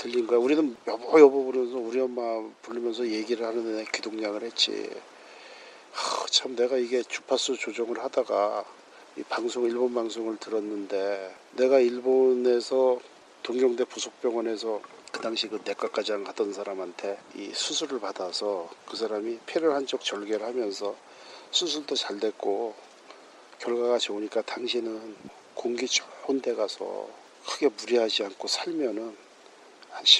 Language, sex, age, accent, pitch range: Korean, male, 40-59, native, 125-180 Hz